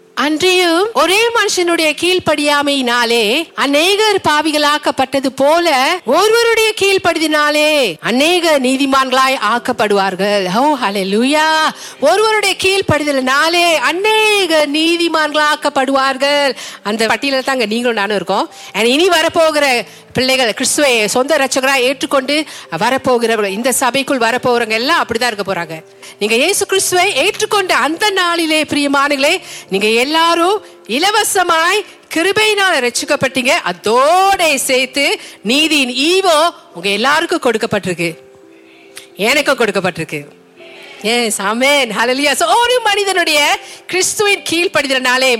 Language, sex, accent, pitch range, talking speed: Tamil, female, native, 245-355 Hz, 35 wpm